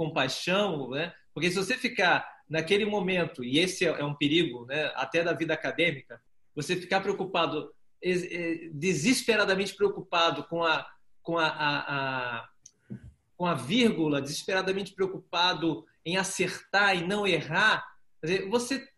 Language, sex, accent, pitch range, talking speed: Portuguese, male, Brazilian, 160-210 Hz, 125 wpm